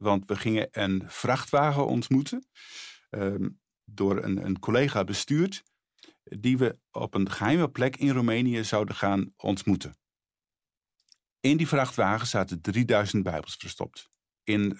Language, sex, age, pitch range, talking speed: Dutch, male, 50-69, 100-125 Hz, 125 wpm